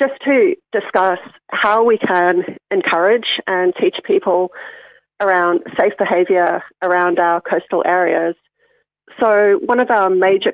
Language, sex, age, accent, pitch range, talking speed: English, female, 40-59, Australian, 180-230 Hz, 125 wpm